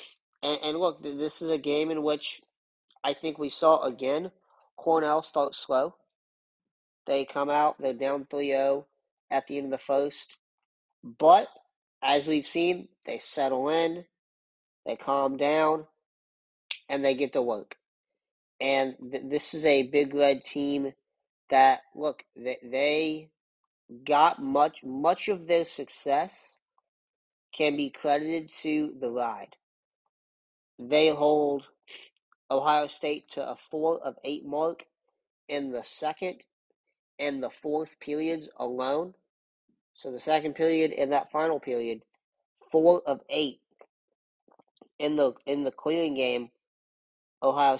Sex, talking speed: male, 125 wpm